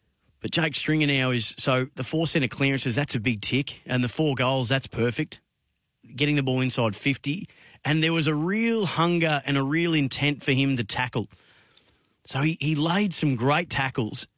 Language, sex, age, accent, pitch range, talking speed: English, male, 30-49, Australian, 120-145 Hz, 190 wpm